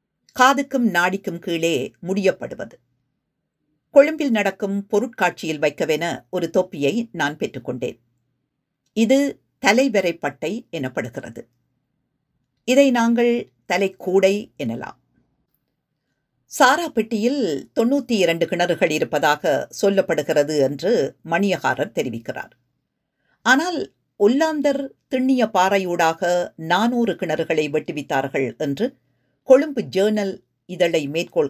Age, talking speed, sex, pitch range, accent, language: 50-69, 80 wpm, female, 155-230 Hz, native, Tamil